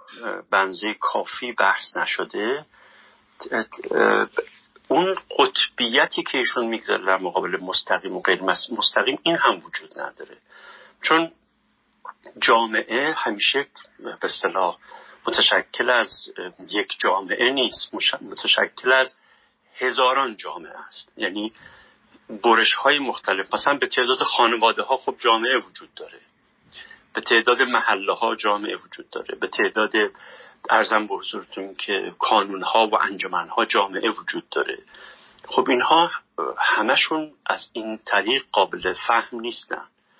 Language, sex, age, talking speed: Persian, male, 50-69, 115 wpm